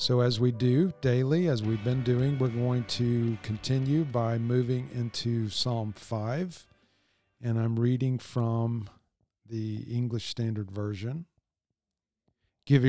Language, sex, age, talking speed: English, male, 50-69, 125 wpm